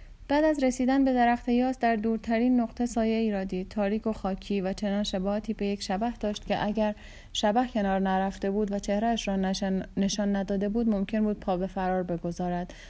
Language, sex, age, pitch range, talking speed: Persian, female, 30-49, 195-240 Hz, 180 wpm